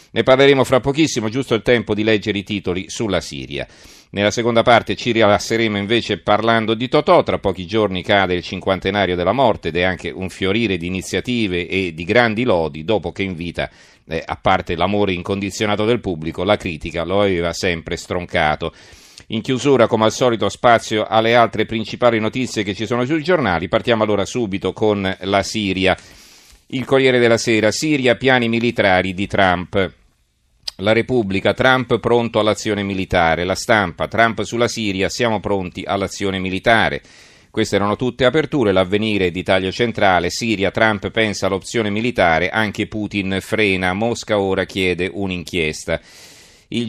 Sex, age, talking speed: male, 40-59, 160 wpm